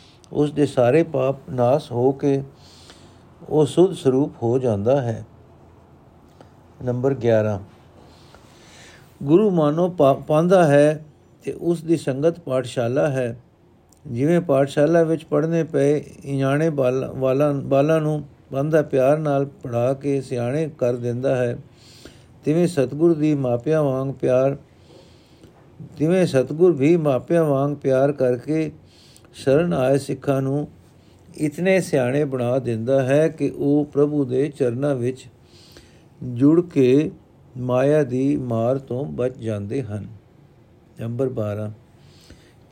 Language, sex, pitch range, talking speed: Punjabi, male, 125-155 Hz, 115 wpm